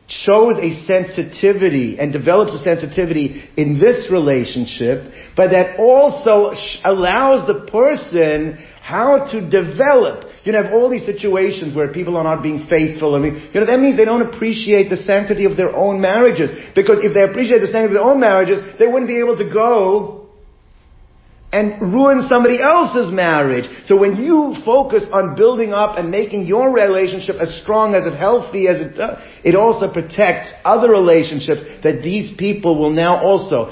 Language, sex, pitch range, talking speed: English, male, 155-210 Hz, 175 wpm